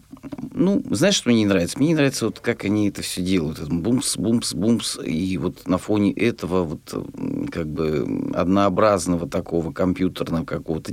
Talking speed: 155 wpm